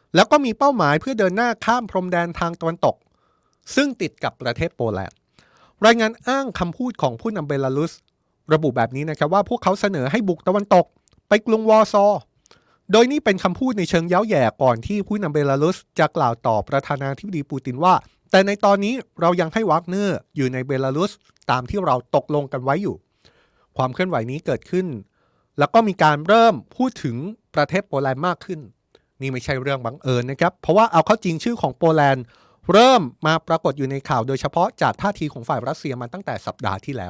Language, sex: Thai, male